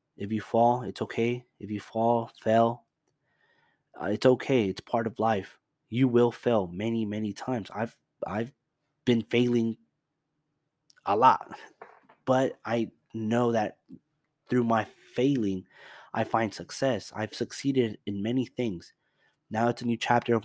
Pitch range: 110-140 Hz